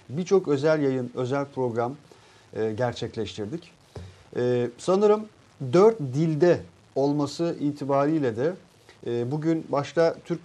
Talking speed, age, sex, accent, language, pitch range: 105 wpm, 40-59, male, native, Turkish, 120-150 Hz